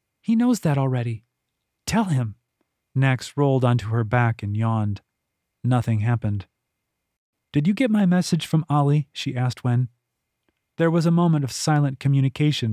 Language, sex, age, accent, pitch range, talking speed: English, male, 30-49, American, 120-160 Hz, 150 wpm